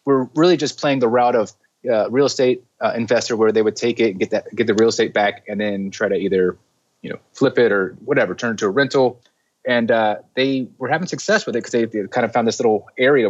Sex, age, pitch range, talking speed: male, 30-49, 110-130 Hz, 260 wpm